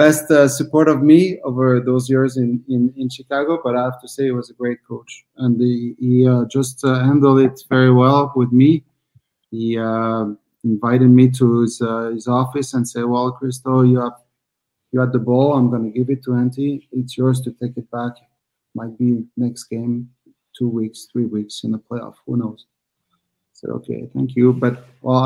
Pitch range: 120-130 Hz